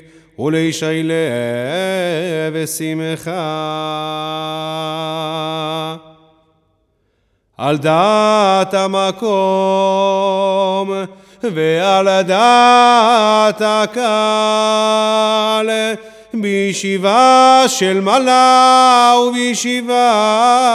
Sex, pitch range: male, 165-220 Hz